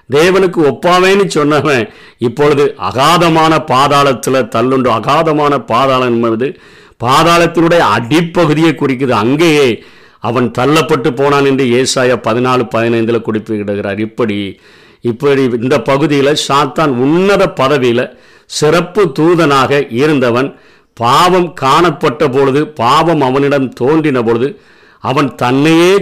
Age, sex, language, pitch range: 50-69, male, Tamil, 130-170 Hz